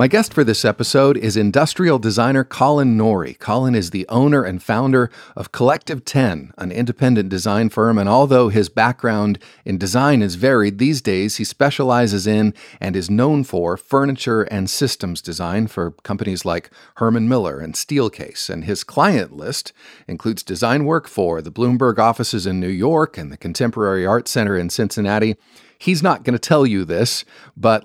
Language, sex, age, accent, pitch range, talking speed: English, male, 50-69, American, 100-125 Hz, 170 wpm